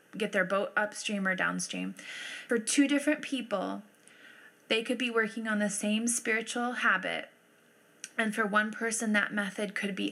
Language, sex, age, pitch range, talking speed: English, female, 20-39, 175-215 Hz, 160 wpm